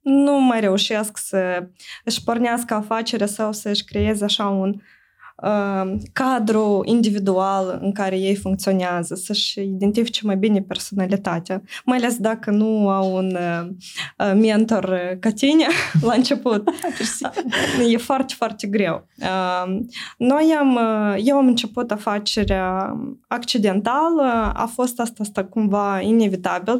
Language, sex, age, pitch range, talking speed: Romanian, female, 20-39, 195-235 Hz, 125 wpm